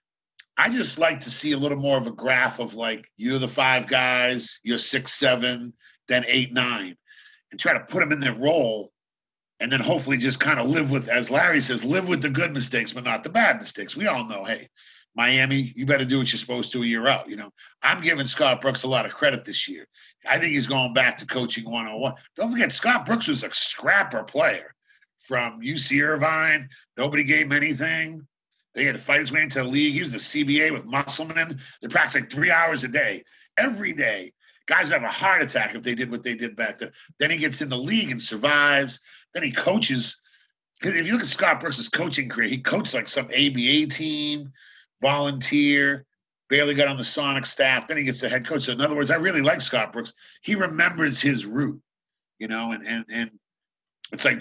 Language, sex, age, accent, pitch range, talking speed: English, male, 50-69, American, 125-155 Hz, 220 wpm